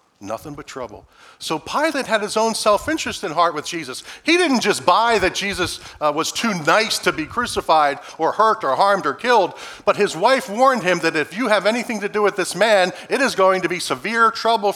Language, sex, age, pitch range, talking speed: English, male, 40-59, 150-220 Hz, 220 wpm